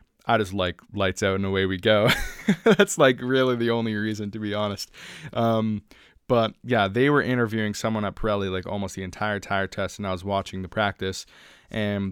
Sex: male